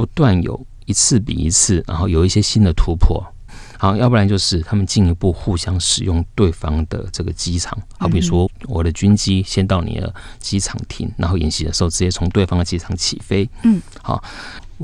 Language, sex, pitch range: Chinese, male, 85-110 Hz